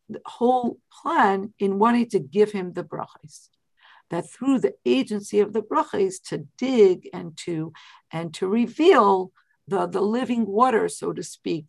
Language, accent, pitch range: English, American, 180-235 Hz